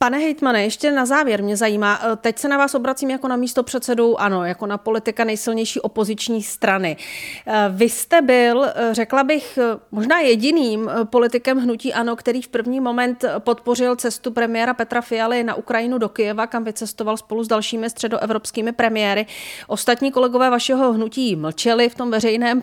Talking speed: 160 wpm